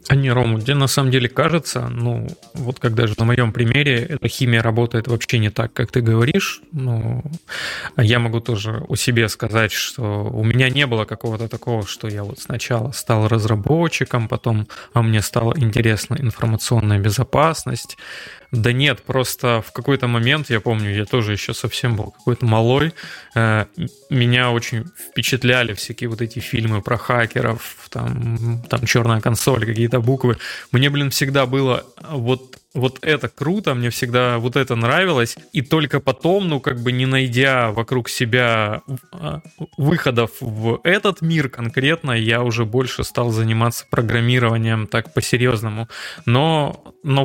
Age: 20-39